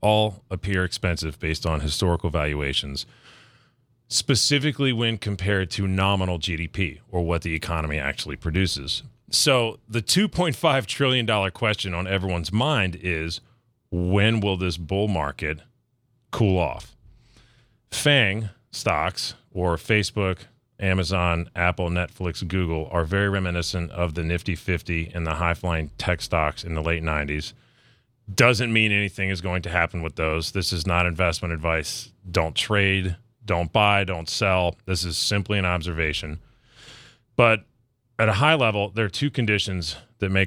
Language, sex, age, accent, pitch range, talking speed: English, male, 30-49, American, 85-110 Hz, 140 wpm